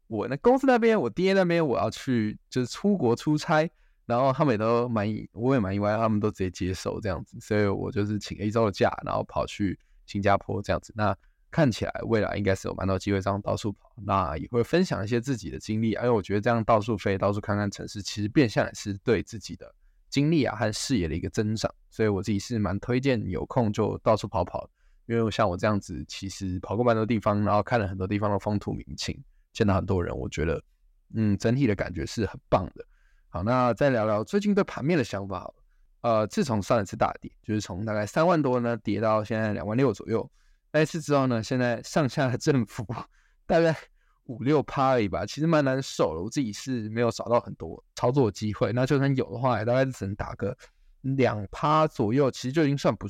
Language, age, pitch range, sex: Chinese, 20-39, 100-130 Hz, male